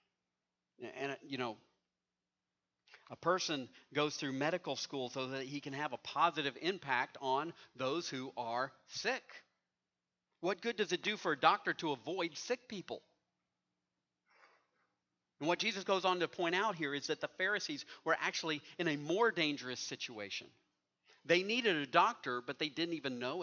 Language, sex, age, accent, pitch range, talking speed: English, male, 50-69, American, 115-155 Hz, 160 wpm